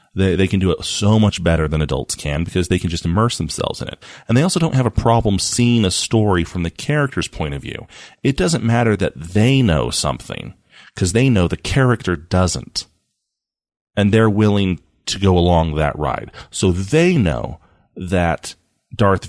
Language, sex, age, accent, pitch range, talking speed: English, male, 30-49, American, 85-115 Hz, 190 wpm